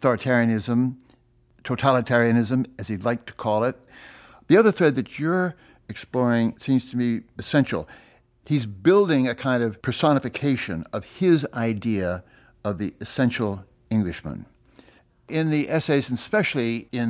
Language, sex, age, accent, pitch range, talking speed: English, male, 60-79, American, 110-145 Hz, 130 wpm